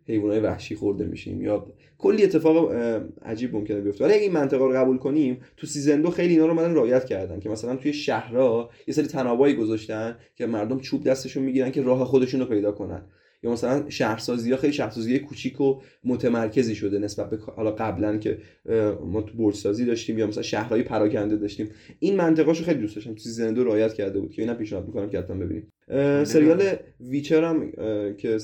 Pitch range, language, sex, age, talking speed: 110-150 Hz, Persian, male, 20-39, 185 wpm